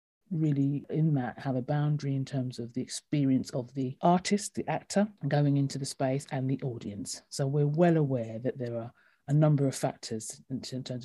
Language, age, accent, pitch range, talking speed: English, 40-59, British, 130-150 Hz, 195 wpm